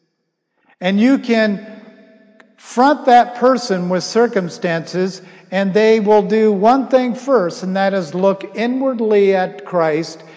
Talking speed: 125 wpm